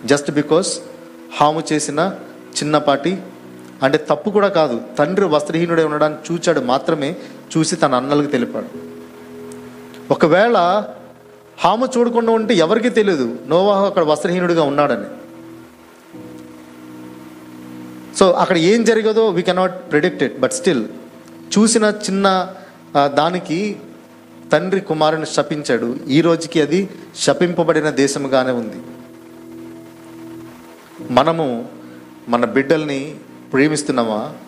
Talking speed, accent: 90 wpm, native